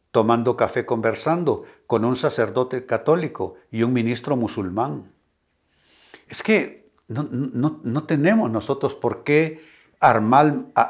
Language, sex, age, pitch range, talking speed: Spanish, male, 60-79, 115-160 Hz, 110 wpm